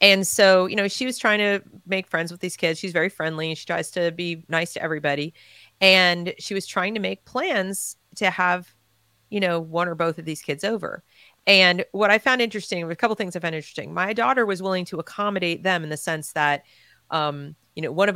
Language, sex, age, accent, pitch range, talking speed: English, female, 40-59, American, 155-190 Hz, 230 wpm